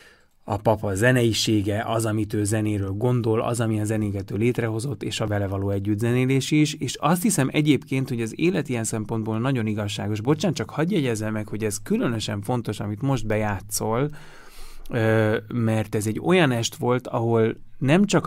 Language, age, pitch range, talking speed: Hungarian, 30-49, 105-130 Hz, 170 wpm